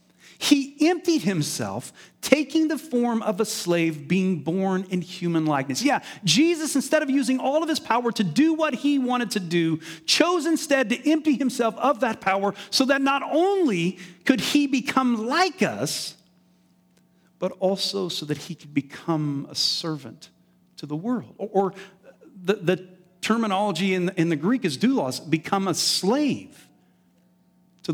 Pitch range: 170-255 Hz